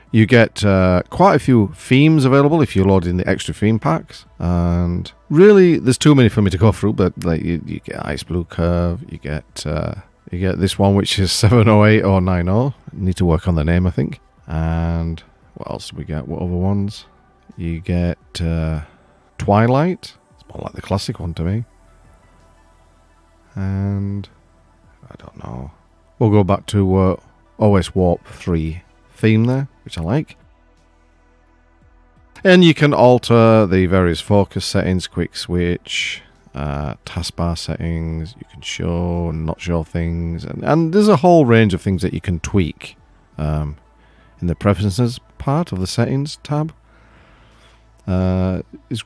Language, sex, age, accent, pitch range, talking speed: English, male, 40-59, British, 80-110 Hz, 170 wpm